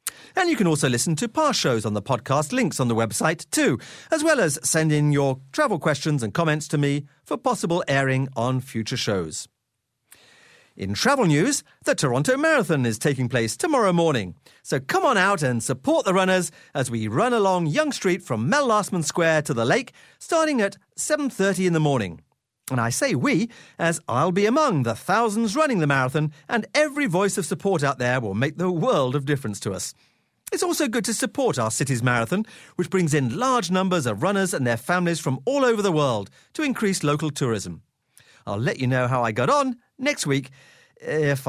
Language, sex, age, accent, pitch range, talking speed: English, male, 40-59, British, 130-215 Hz, 200 wpm